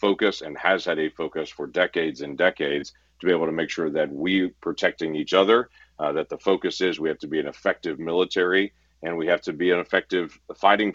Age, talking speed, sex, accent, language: 40-59, 225 wpm, male, American, English